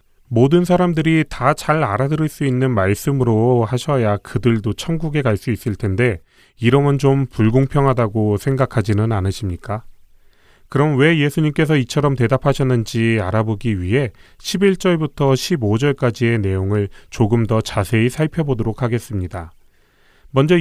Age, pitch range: 30-49, 105-150 Hz